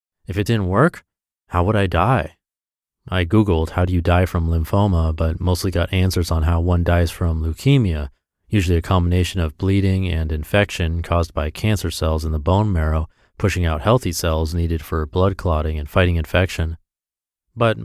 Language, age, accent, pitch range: English, 30-49, American, 85-105 Hz